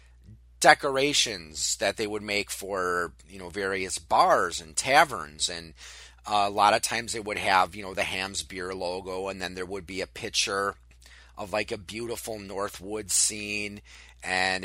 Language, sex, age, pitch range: English, male, 30-49, 90-110 Hz